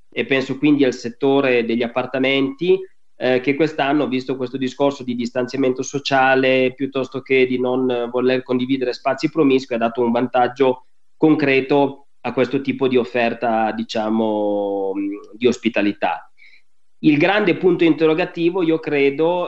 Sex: male